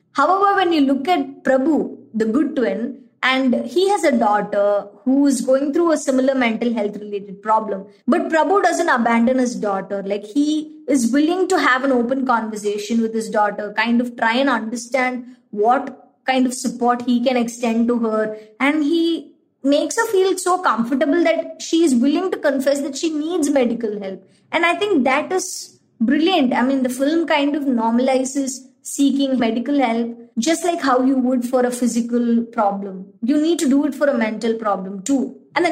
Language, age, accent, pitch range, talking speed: English, 20-39, Indian, 225-295 Hz, 185 wpm